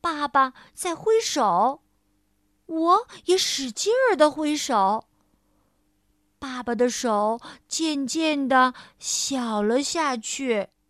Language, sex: Chinese, female